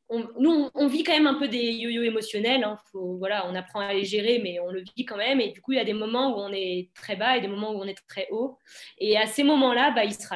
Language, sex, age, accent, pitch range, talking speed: French, female, 20-39, French, 210-260 Hz, 315 wpm